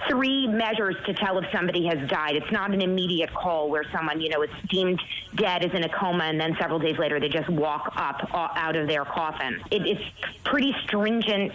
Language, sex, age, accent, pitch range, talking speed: English, female, 30-49, American, 175-225 Hz, 220 wpm